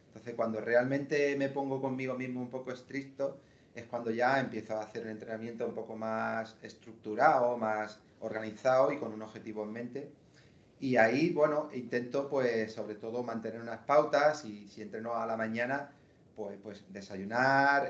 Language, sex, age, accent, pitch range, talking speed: Spanish, male, 30-49, Spanish, 110-125 Hz, 165 wpm